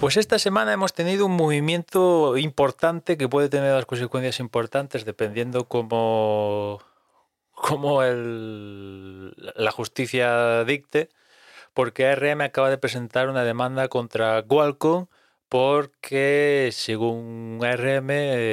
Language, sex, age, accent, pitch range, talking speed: Spanish, male, 30-49, Spanish, 105-135 Hz, 105 wpm